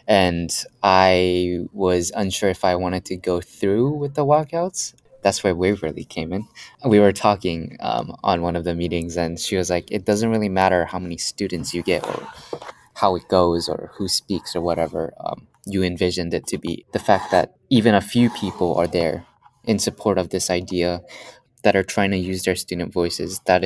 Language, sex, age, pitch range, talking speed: English, male, 20-39, 85-100 Hz, 200 wpm